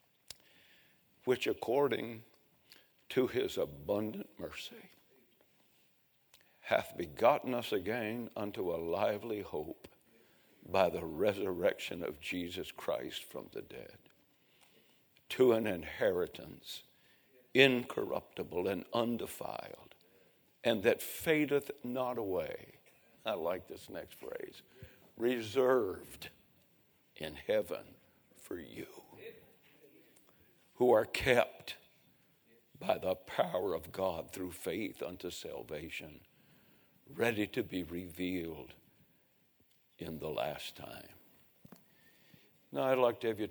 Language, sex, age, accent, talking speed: English, male, 60-79, American, 95 wpm